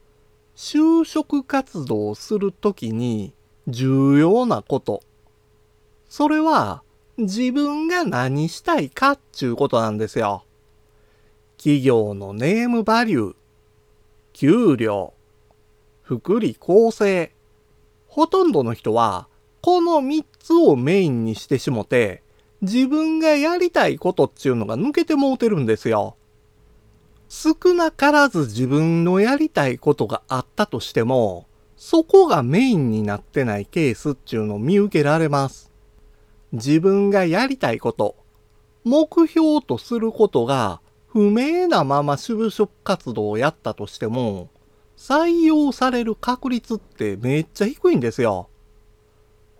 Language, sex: Japanese, male